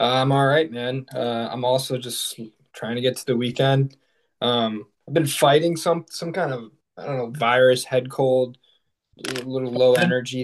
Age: 20-39